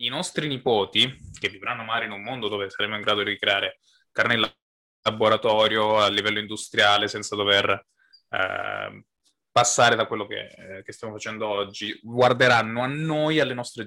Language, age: Italian, 20-39